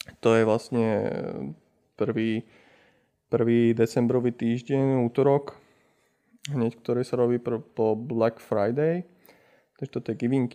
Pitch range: 115-130 Hz